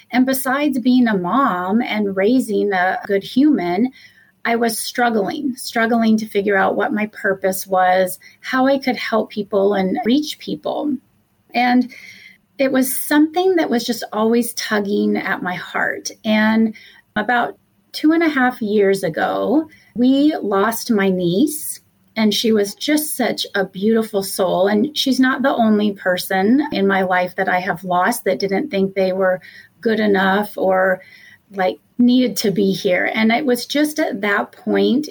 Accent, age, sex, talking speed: American, 30-49, female, 160 wpm